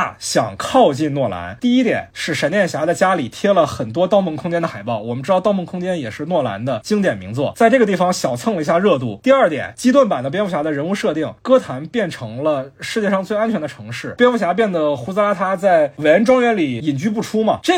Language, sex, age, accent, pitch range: Chinese, male, 20-39, native, 160-235 Hz